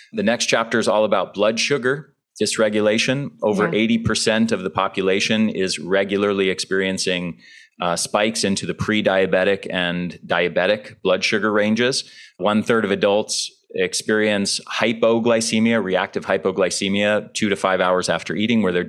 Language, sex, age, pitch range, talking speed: English, male, 30-49, 95-110 Hz, 135 wpm